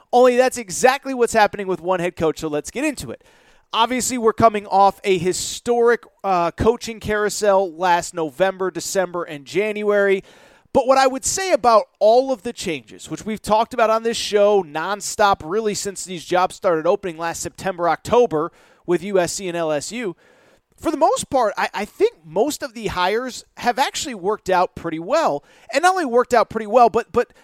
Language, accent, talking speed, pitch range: English, American, 185 wpm, 175-225 Hz